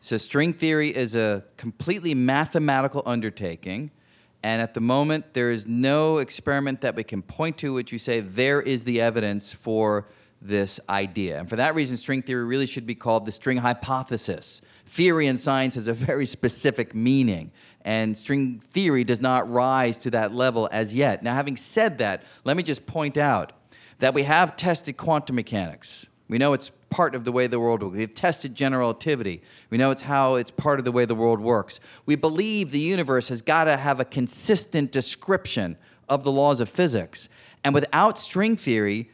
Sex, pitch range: male, 115-155 Hz